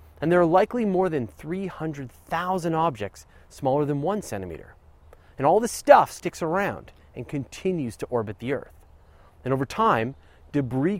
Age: 30-49